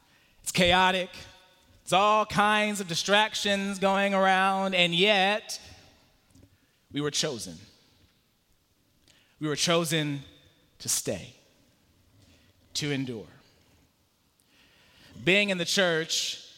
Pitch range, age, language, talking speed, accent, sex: 155-205 Hz, 30-49, English, 90 wpm, American, male